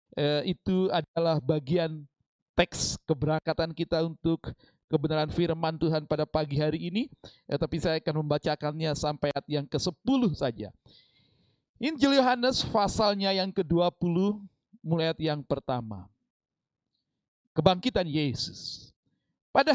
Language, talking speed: Indonesian, 105 wpm